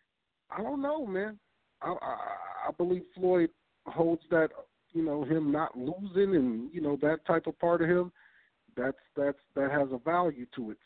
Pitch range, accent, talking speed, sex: 130-165 Hz, American, 180 wpm, male